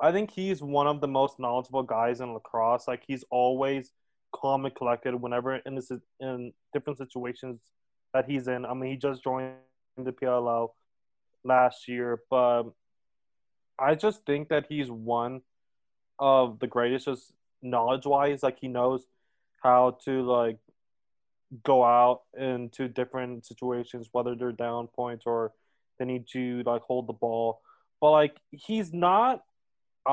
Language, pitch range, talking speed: English, 120-135 Hz, 150 wpm